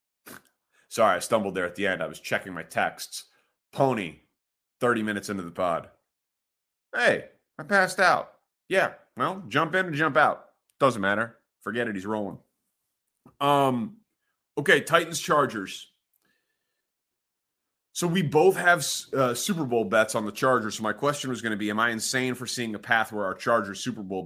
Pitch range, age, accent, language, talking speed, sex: 105-155 Hz, 30-49, American, English, 170 wpm, male